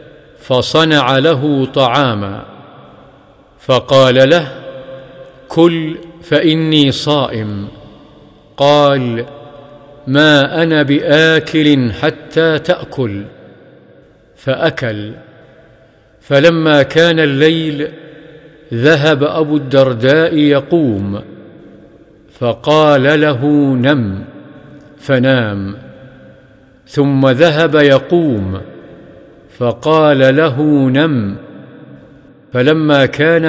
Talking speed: 60 wpm